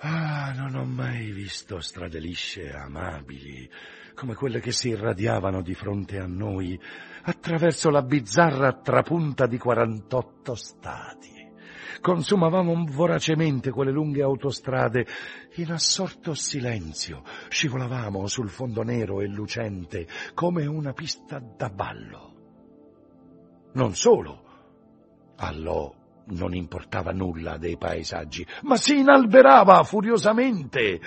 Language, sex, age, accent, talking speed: Italian, male, 60-79, native, 110 wpm